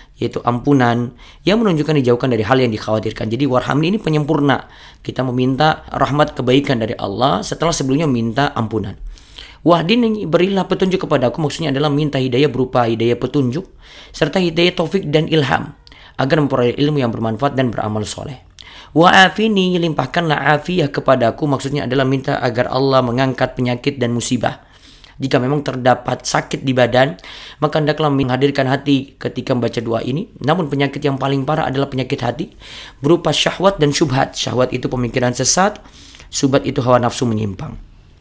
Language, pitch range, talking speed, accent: Indonesian, 125-150 Hz, 155 wpm, native